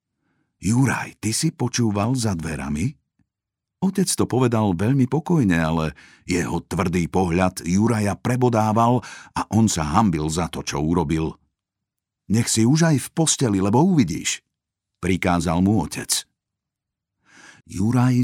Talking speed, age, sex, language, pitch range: 120 wpm, 50-69, male, Slovak, 85-125 Hz